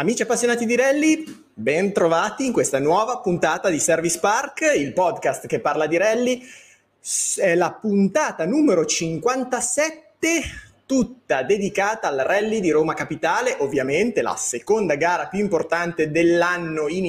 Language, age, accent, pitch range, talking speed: Italian, 30-49, native, 160-250 Hz, 140 wpm